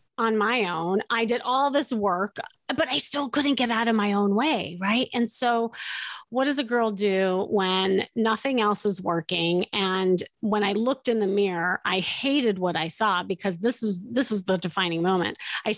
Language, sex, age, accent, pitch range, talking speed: English, female, 30-49, American, 195-250 Hz, 200 wpm